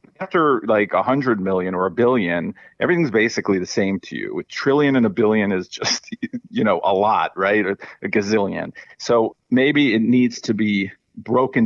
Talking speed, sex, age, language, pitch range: 185 wpm, male, 40-59, English, 95-125 Hz